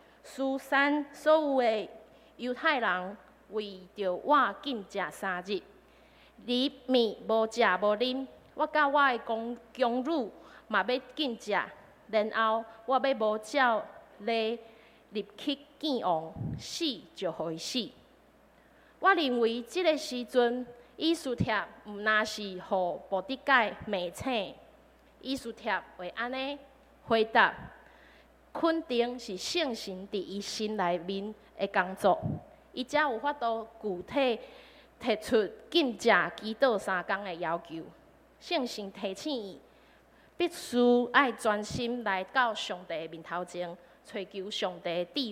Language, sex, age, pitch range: Chinese, female, 20-39, 195-265 Hz